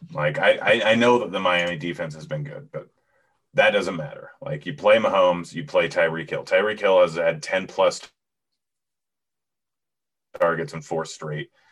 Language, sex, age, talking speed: English, male, 30-49, 175 wpm